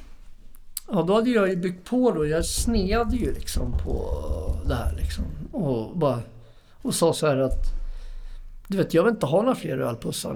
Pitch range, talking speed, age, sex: 120-185 Hz, 185 wpm, 60-79, male